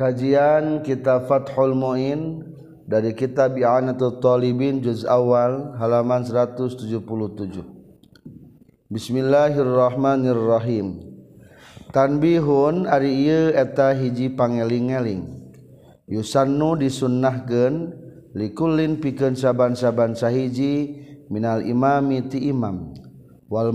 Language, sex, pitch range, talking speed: Indonesian, male, 120-140 Hz, 80 wpm